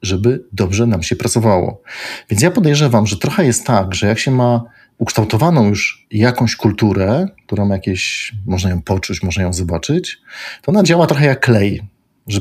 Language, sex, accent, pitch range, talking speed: Polish, male, native, 95-120 Hz, 170 wpm